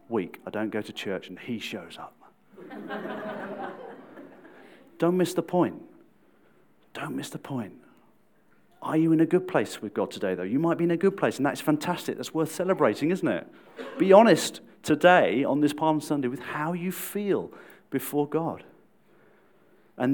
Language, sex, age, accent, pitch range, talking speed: English, male, 40-59, British, 135-175 Hz, 170 wpm